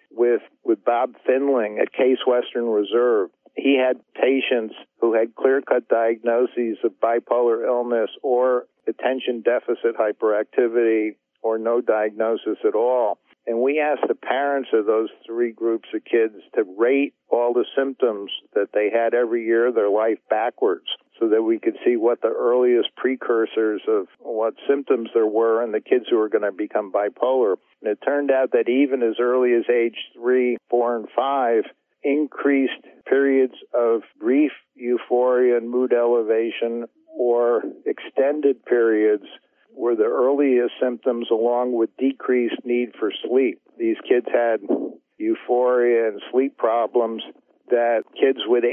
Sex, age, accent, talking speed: male, 50-69, American, 150 wpm